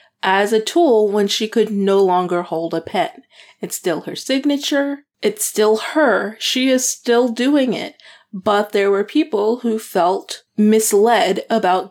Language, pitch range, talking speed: English, 180-220 Hz, 155 wpm